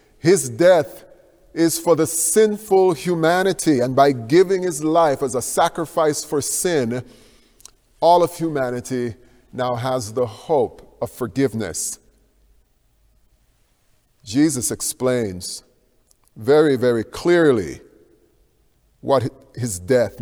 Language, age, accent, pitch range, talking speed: English, 40-59, American, 115-150 Hz, 100 wpm